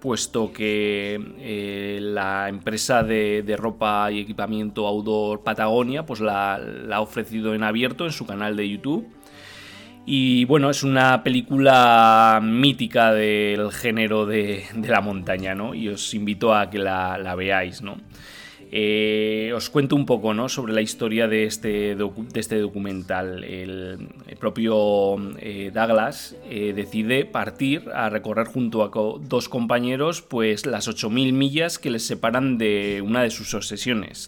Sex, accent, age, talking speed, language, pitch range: male, Spanish, 20-39, 145 wpm, Spanish, 105-125 Hz